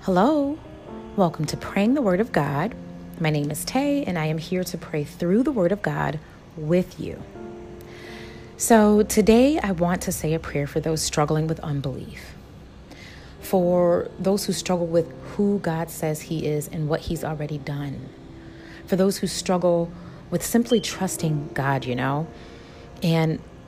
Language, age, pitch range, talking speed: English, 30-49, 150-190 Hz, 160 wpm